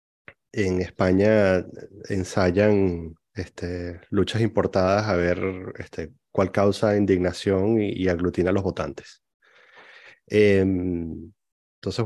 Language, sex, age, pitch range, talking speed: Spanish, male, 30-49, 90-115 Hz, 100 wpm